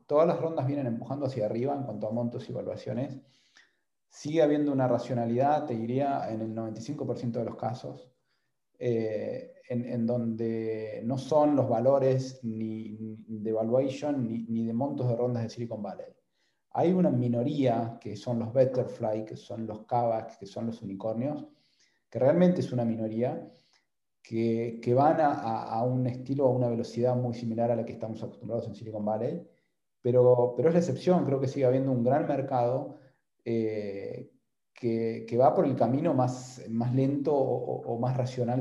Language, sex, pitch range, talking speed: Spanish, male, 115-135 Hz, 175 wpm